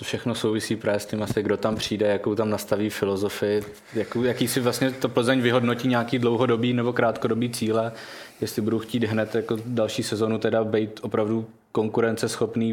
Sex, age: male, 20-39